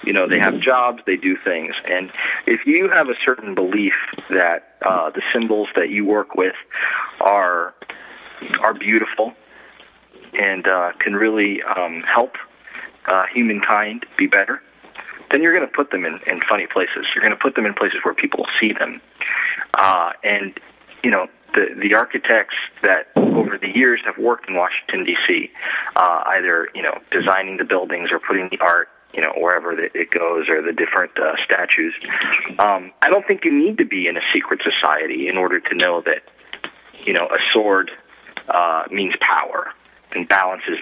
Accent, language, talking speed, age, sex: American, English, 175 wpm, 30-49, male